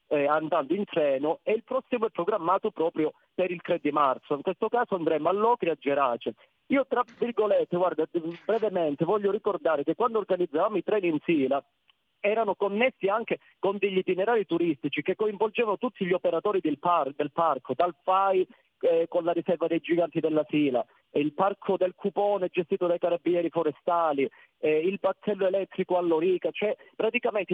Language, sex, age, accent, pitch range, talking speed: Italian, male, 40-59, native, 170-235 Hz, 170 wpm